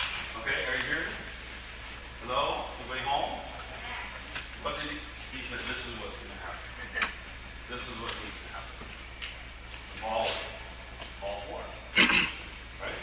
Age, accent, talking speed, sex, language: 40-59, American, 120 wpm, male, English